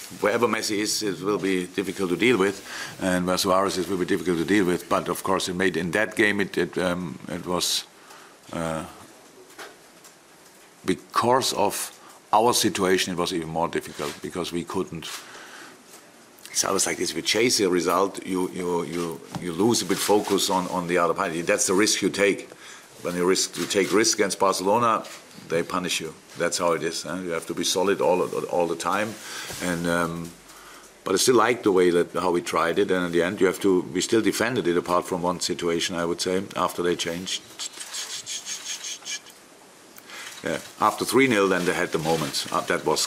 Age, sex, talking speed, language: 50-69, male, 200 wpm, English